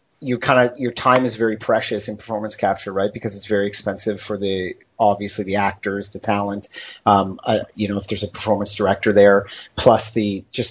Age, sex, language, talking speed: 30-49, male, English, 200 wpm